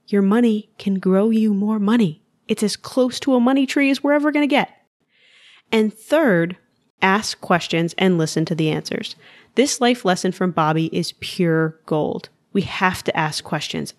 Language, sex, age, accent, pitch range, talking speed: English, female, 20-39, American, 170-225 Hz, 180 wpm